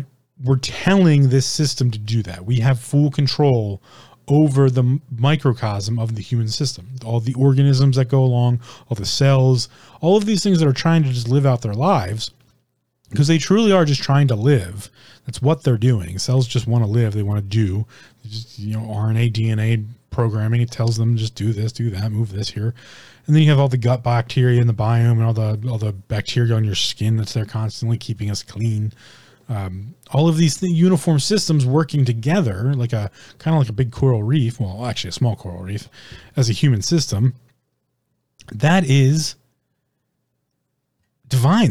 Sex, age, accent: male, 30-49, American